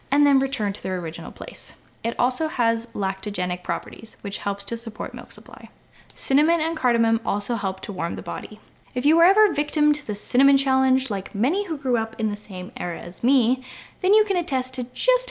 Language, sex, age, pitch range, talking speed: English, female, 10-29, 210-275 Hz, 210 wpm